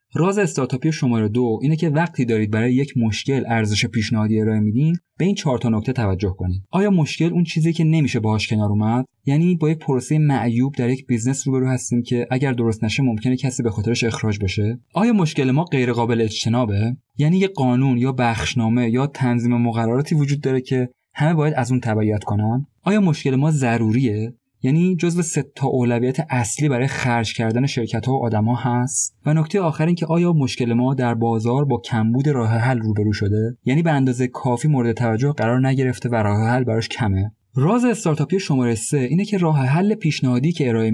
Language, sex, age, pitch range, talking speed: Persian, male, 30-49, 115-145 Hz, 195 wpm